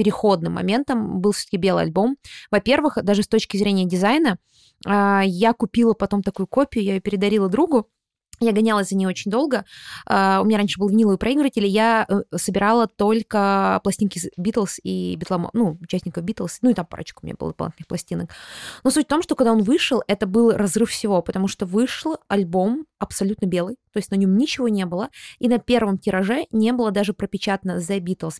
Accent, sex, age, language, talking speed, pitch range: native, female, 20-39, Russian, 180 wpm, 190-230 Hz